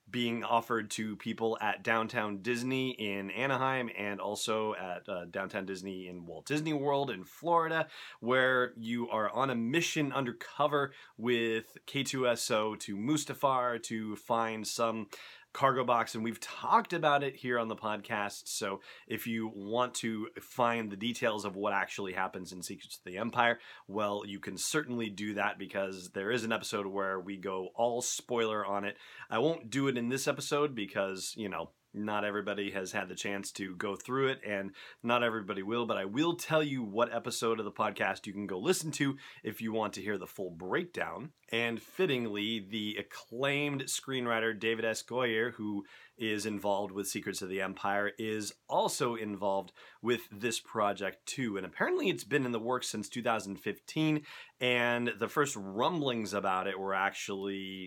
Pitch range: 100-125 Hz